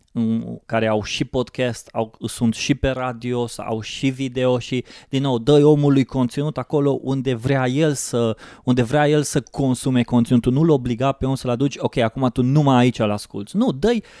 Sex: male